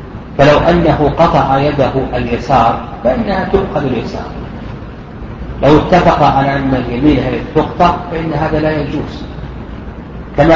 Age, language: 40-59, Arabic